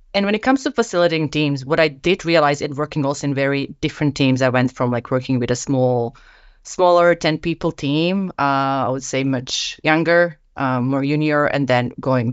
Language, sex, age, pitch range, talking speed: English, female, 30-49, 140-185 Hz, 205 wpm